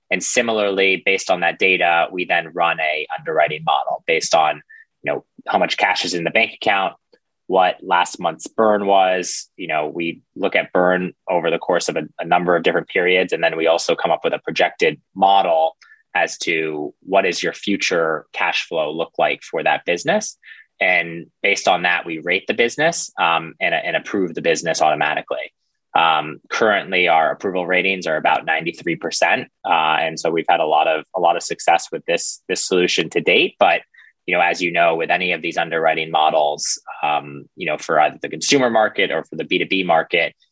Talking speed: 200 wpm